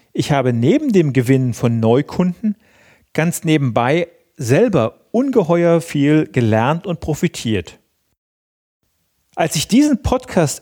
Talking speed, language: 105 wpm, German